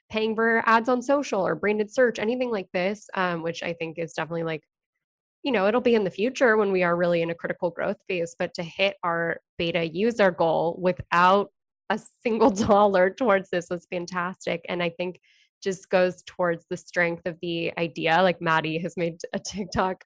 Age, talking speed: 10-29, 195 wpm